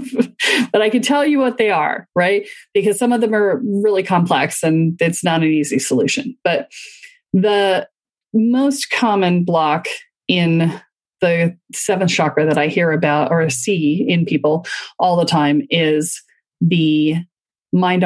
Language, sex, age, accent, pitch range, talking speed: English, female, 40-59, American, 175-285 Hz, 150 wpm